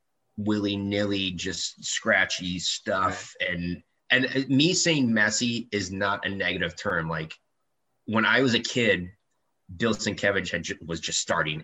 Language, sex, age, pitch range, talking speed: English, male, 30-49, 80-100 Hz, 130 wpm